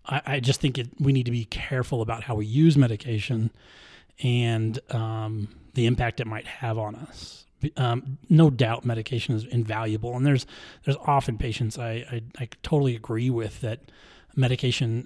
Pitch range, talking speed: 110-130 Hz, 170 wpm